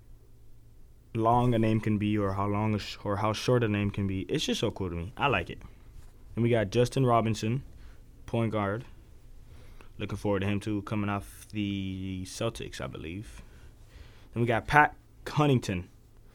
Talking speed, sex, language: 180 wpm, male, English